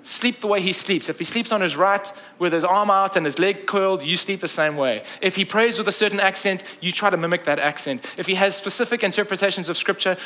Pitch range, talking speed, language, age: 145-195 Hz, 255 wpm, English, 20-39